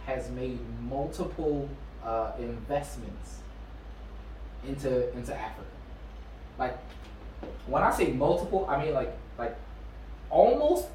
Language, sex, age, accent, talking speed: English, male, 20-39, American, 100 wpm